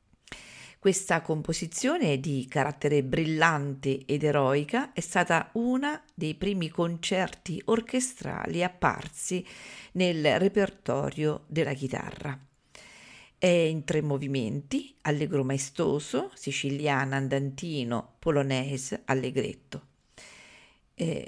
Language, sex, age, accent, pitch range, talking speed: Italian, female, 40-59, native, 145-190 Hz, 85 wpm